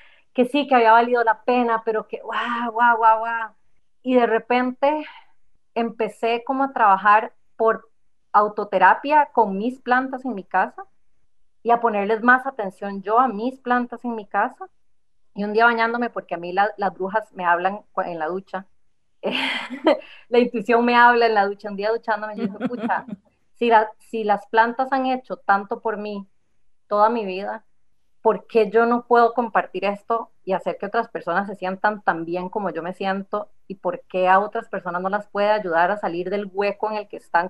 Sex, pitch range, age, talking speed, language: female, 190-235 Hz, 30-49, 190 wpm, Spanish